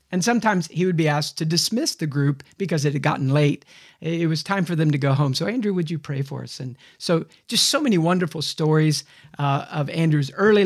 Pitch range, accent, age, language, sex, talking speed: 150-180 Hz, American, 50-69, English, male, 230 wpm